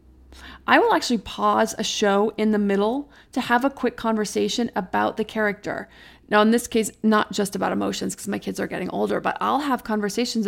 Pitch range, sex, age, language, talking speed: 200-240 Hz, female, 30-49, English, 200 wpm